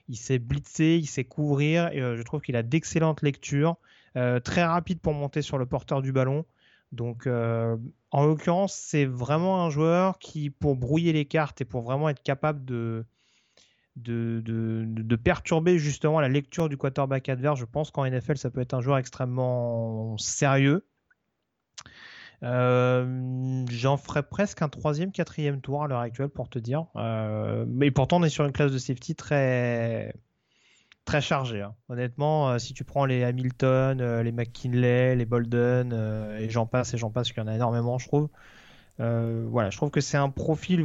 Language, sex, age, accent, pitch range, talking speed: French, male, 30-49, French, 125-150 Hz, 185 wpm